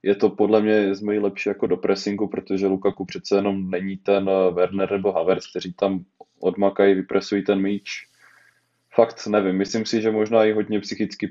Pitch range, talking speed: 95-105 Hz, 175 wpm